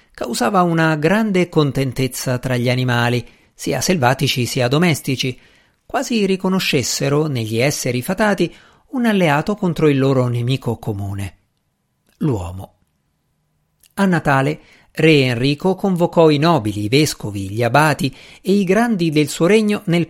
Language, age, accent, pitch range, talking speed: Italian, 50-69, native, 120-170 Hz, 125 wpm